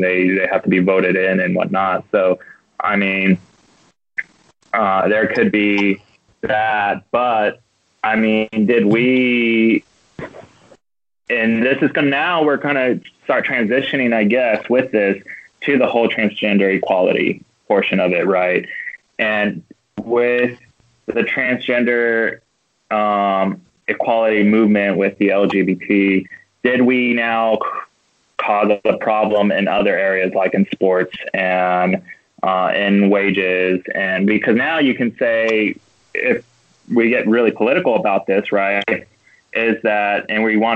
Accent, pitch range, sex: American, 95-115 Hz, male